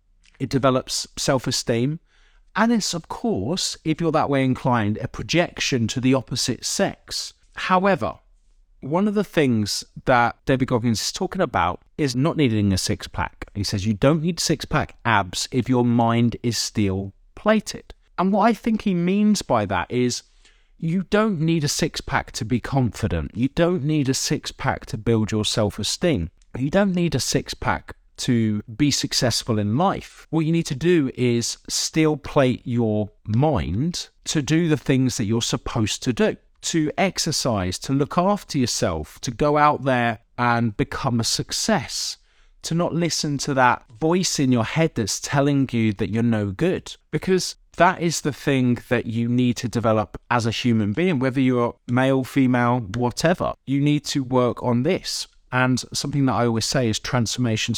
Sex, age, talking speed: male, 30-49, 180 wpm